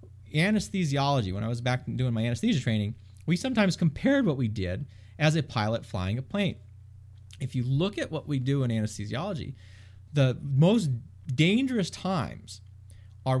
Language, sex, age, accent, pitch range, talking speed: English, male, 30-49, American, 105-140 Hz, 155 wpm